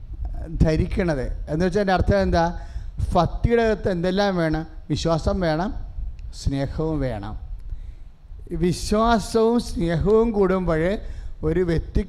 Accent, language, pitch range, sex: Indian, English, 150-210 Hz, male